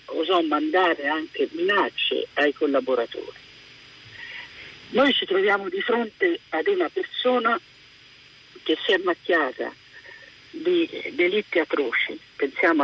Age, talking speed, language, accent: 50-69, 105 wpm, Italian, native